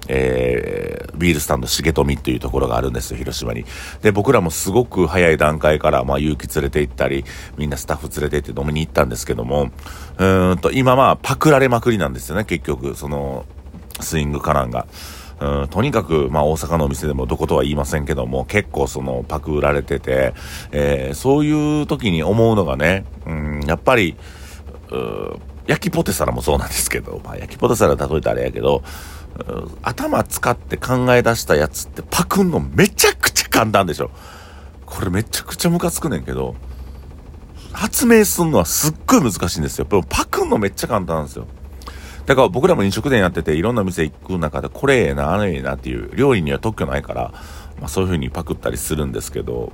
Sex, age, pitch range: male, 40-59, 70-95 Hz